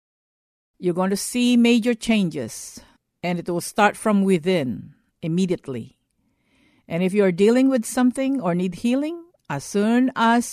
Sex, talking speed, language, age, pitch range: female, 150 wpm, English, 50-69, 175-240 Hz